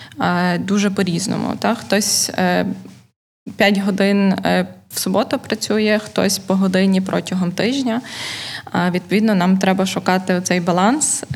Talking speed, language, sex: 105 wpm, Ukrainian, female